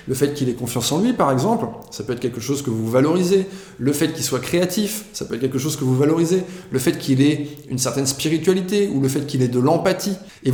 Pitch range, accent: 135-180 Hz, French